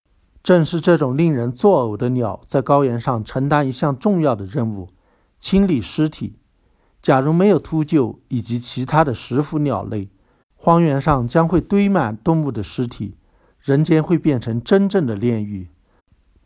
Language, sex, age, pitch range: Chinese, male, 60-79, 115-165 Hz